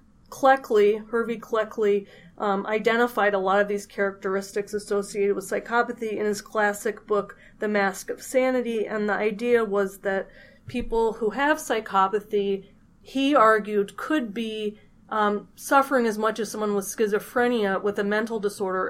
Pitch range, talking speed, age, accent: 200-230 Hz, 145 wpm, 30-49, American